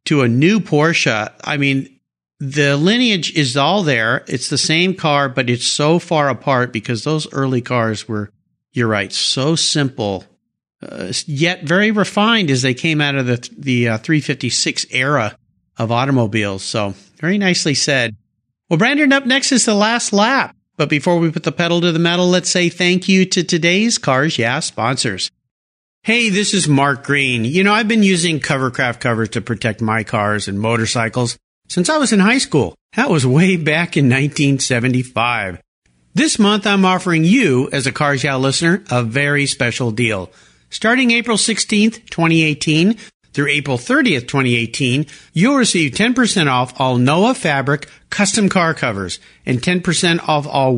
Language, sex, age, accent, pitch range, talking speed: English, male, 50-69, American, 125-180 Hz, 170 wpm